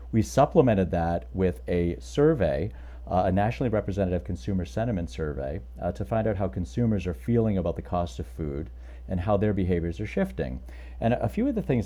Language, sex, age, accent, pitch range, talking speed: English, male, 40-59, American, 80-105 Hz, 190 wpm